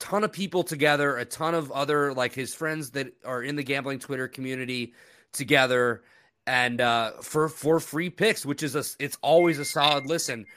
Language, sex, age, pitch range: English, male, 30-49, 130-155 Hz